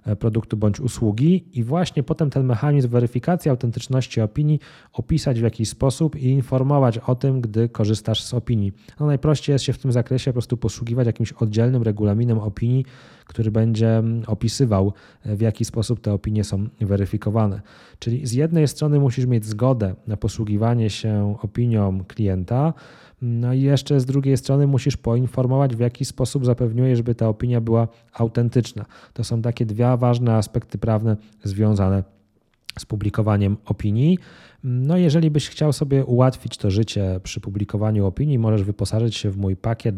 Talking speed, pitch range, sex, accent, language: 155 wpm, 105-125 Hz, male, native, Polish